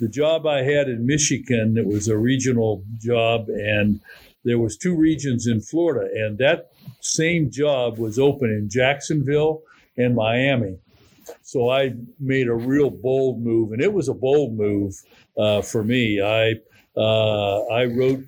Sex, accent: male, American